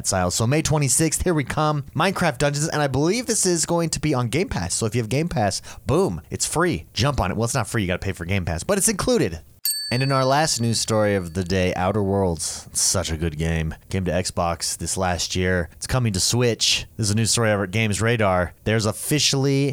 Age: 30-49